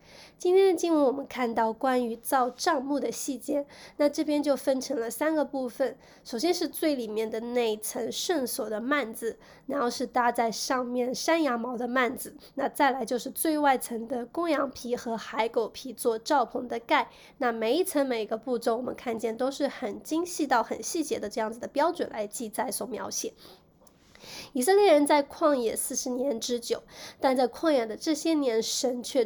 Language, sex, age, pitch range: Chinese, female, 20-39, 230-290 Hz